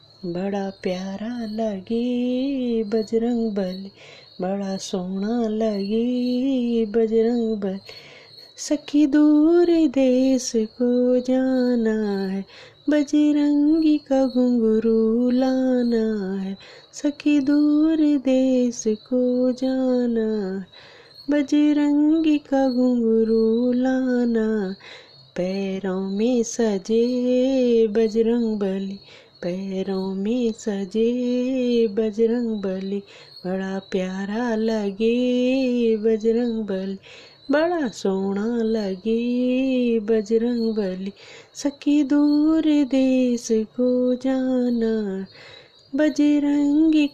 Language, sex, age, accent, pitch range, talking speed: Hindi, female, 20-39, native, 220-265 Hz, 70 wpm